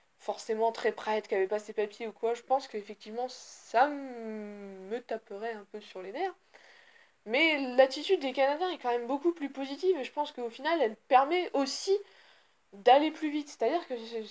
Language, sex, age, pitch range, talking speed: French, female, 20-39, 220-315 Hz, 195 wpm